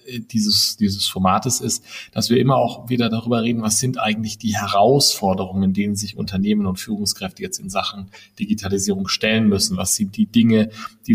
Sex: male